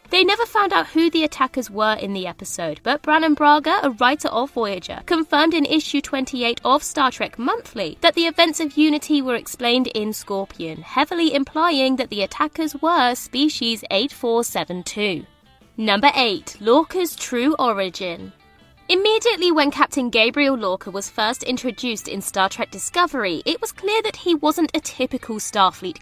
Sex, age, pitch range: female, 20-39, 225-330 Hz